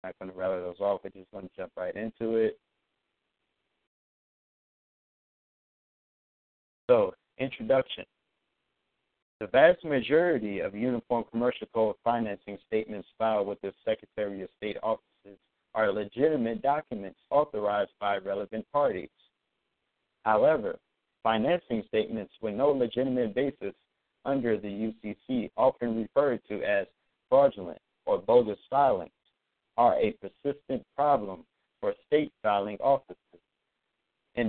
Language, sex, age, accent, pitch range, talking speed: English, male, 50-69, American, 105-140 Hz, 115 wpm